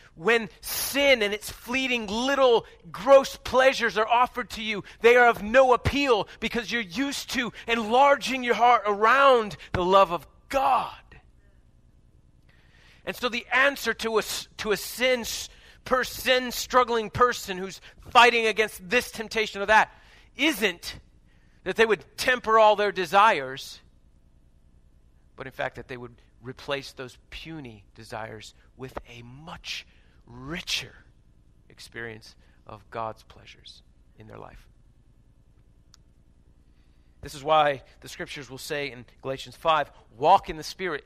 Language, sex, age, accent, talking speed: English, male, 40-59, American, 135 wpm